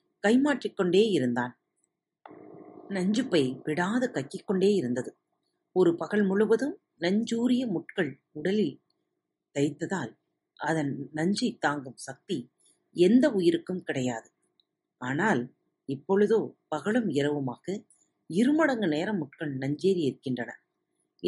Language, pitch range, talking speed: Tamil, 145-215 Hz, 80 wpm